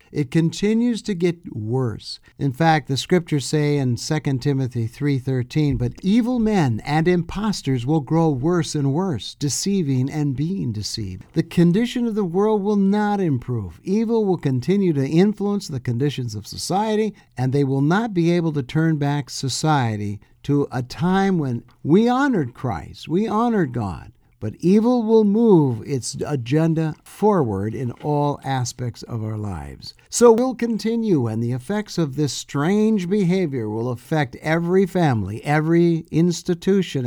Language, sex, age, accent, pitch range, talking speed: English, male, 60-79, American, 130-180 Hz, 150 wpm